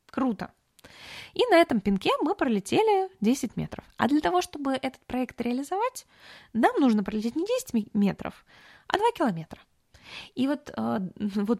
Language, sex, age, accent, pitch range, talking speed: Russian, female, 20-39, native, 200-275 Hz, 145 wpm